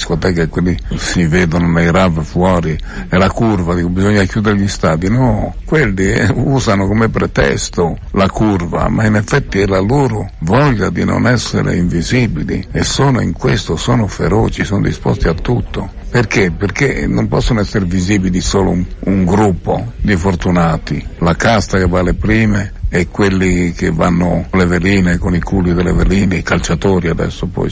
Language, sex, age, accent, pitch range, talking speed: Italian, male, 60-79, native, 85-105 Hz, 165 wpm